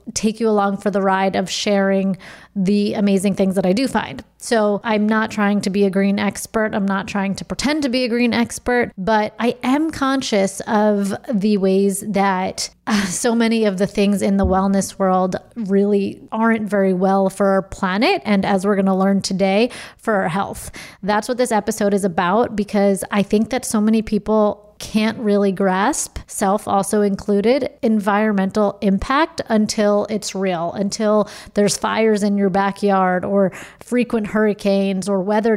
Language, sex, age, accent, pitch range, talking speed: English, female, 30-49, American, 195-225 Hz, 175 wpm